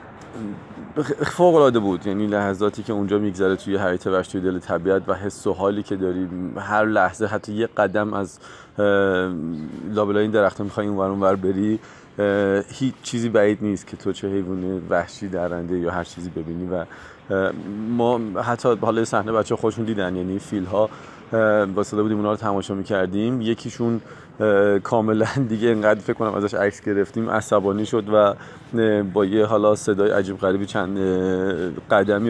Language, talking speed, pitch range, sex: Persian, 155 wpm, 95-115 Hz, male